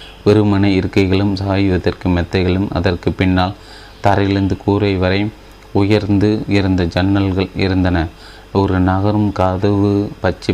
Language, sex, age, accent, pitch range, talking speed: Tamil, male, 30-49, native, 90-100 Hz, 95 wpm